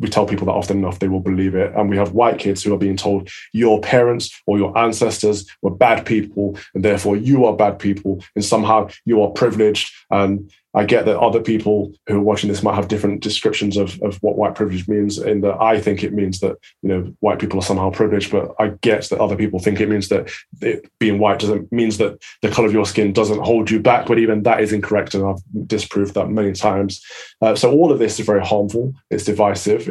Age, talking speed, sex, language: 20-39, 235 wpm, male, English